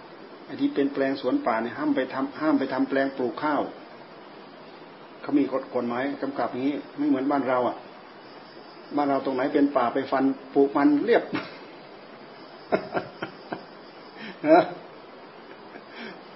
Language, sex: Thai, male